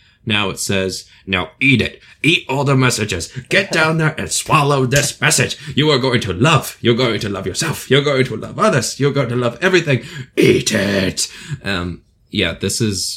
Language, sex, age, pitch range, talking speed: English, male, 20-39, 90-115 Hz, 195 wpm